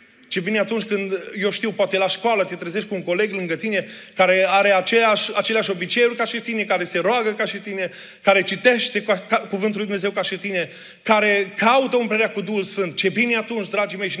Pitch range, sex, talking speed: 175-210 Hz, male, 220 wpm